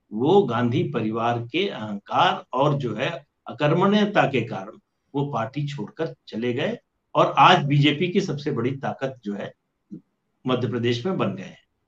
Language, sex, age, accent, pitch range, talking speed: English, male, 60-79, Indian, 125-165 Hz, 155 wpm